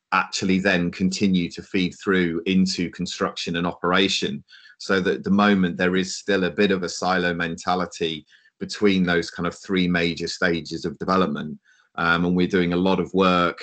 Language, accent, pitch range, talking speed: English, British, 85-95 Hz, 180 wpm